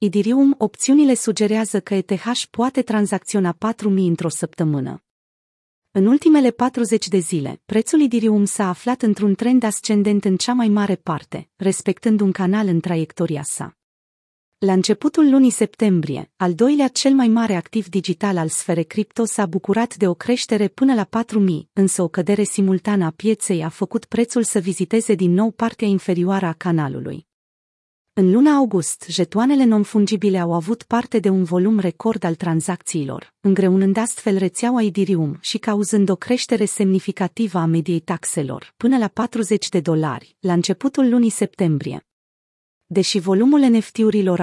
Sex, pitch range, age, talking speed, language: female, 180-225 Hz, 30-49, 150 wpm, Romanian